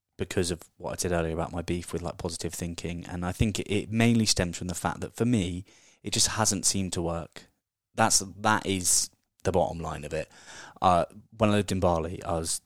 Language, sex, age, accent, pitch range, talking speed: English, male, 20-39, British, 85-105 Hz, 225 wpm